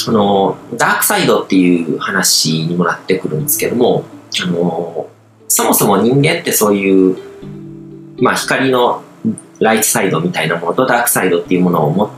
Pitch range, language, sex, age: 95-155 Hz, Japanese, male, 40-59